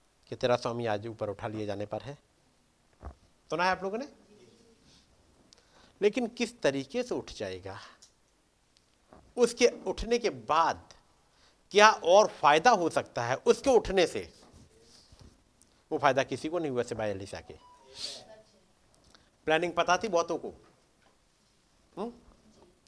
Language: Hindi